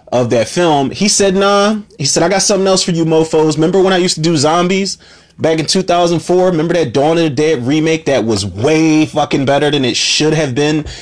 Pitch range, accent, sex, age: 115-155 Hz, American, male, 30-49